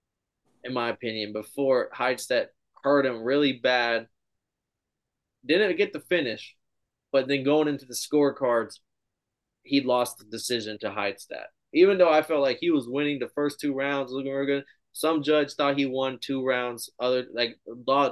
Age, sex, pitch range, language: 20-39, male, 115-140 Hz, English